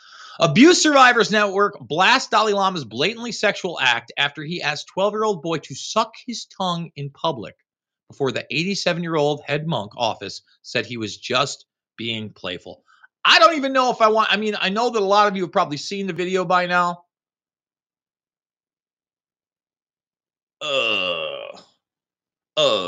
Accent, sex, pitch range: American, male, 120-200 Hz